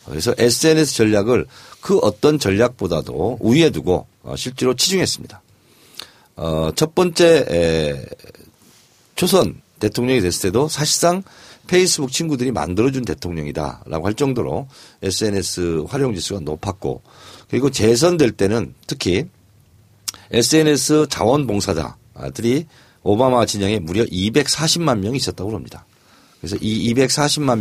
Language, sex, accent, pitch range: Korean, male, native, 95-135 Hz